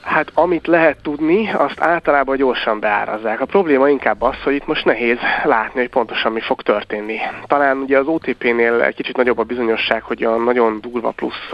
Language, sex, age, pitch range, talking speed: Hungarian, male, 30-49, 115-135 Hz, 180 wpm